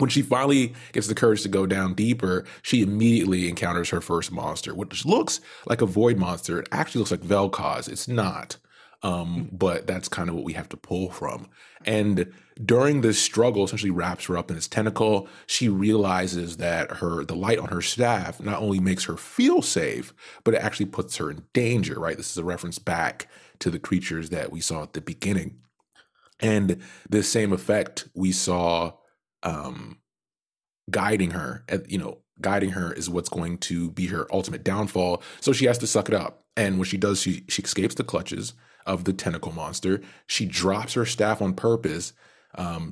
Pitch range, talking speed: 90-110 Hz, 190 wpm